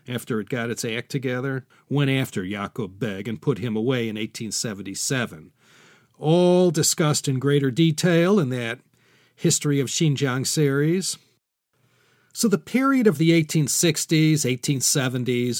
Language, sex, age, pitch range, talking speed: English, male, 40-59, 120-155 Hz, 130 wpm